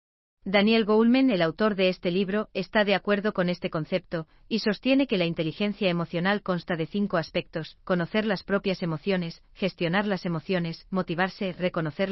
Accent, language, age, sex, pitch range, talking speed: Spanish, Spanish, 40-59, female, 165-205 Hz, 160 wpm